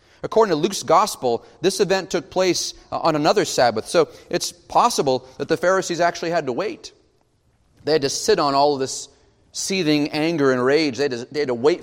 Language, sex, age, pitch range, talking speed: English, male, 30-49, 135-185 Hz, 205 wpm